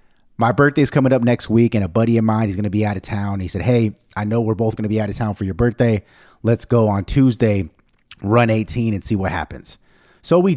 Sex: male